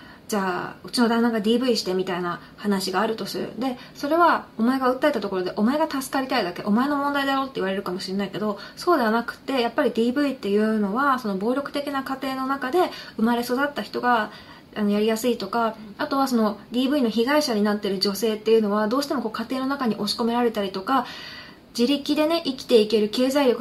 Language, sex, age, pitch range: Japanese, female, 20-39, 210-270 Hz